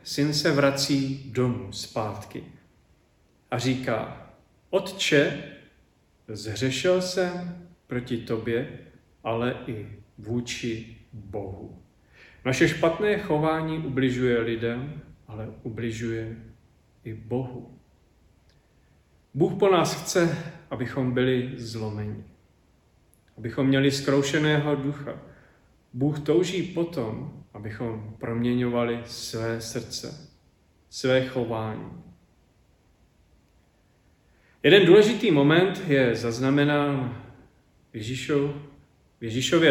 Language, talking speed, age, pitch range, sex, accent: Czech, 80 wpm, 40-59, 110-145 Hz, male, native